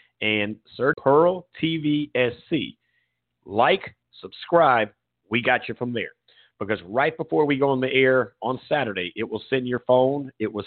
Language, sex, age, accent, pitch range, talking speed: English, male, 50-69, American, 115-145 Hz, 165 wpm